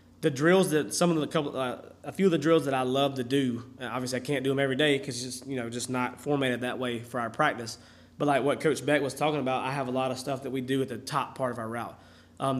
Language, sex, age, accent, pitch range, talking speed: English, male, 20-39, American, 125-145 Hz, 305 wpm